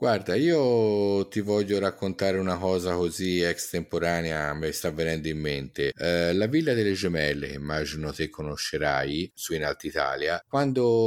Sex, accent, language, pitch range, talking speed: male, native, Italian, 85-120 Hz, 140 wpm